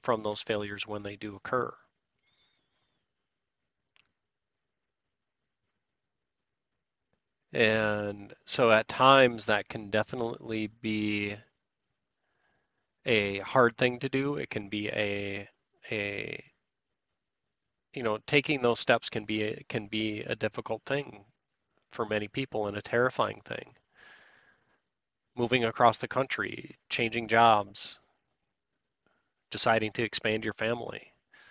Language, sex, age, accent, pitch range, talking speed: English, male, 30-49, American, 105-120 Hz, 105 wpm